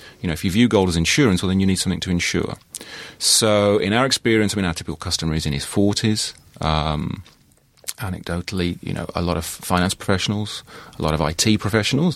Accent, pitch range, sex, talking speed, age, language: British, 85-105 Hz, male, 200 wpm, 30-49, English